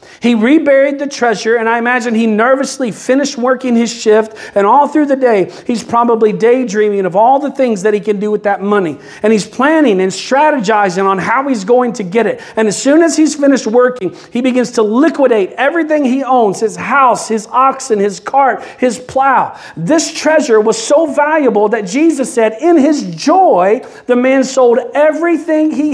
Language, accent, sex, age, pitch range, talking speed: English, American, male, 40-59, 195-270 Hz, 190 wpm